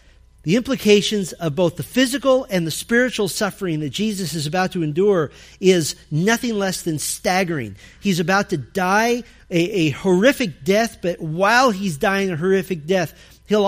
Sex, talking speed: male, 160 wpm